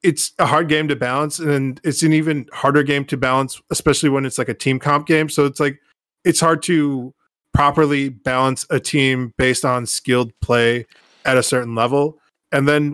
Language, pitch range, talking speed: English, 135-165 Hz, 195 wpm